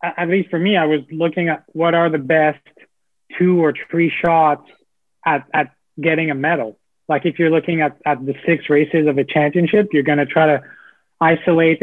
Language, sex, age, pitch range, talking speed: English, male, 20-39, 145-170 Hz, 200 wpm